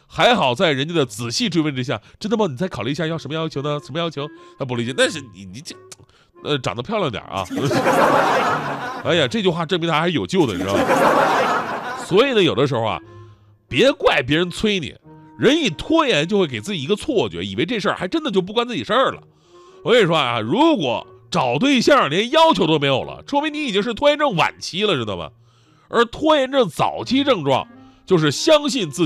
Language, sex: Chinese, male